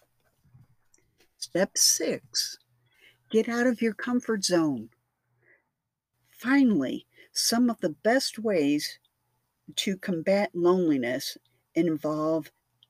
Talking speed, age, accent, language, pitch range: 85 wpm, 60-79, American, English, 150-240 Hz